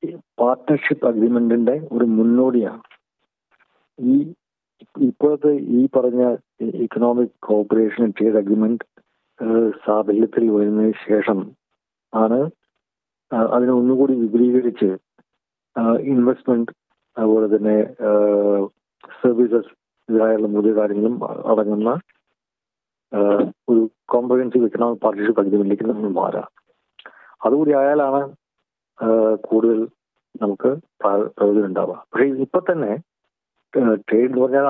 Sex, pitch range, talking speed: male, 110-130 Hz, 80 wpm